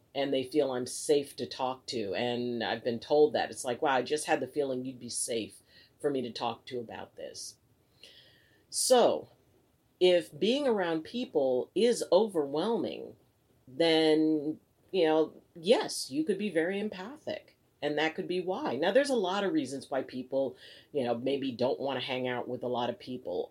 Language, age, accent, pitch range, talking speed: English, 40-59, American, 130-185 Hz, 185 wpm